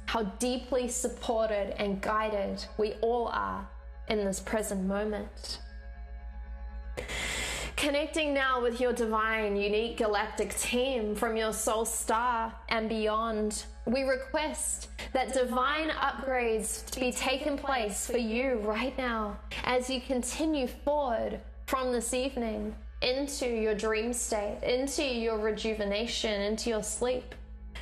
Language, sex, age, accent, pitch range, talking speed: English, female, 20-39, Australian, 215-250 Hz, 120 wpm